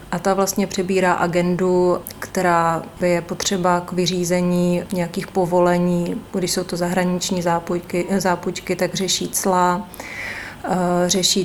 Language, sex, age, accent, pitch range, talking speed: Czech, female, 30-49, native, 170-185 Hz, 110 wpm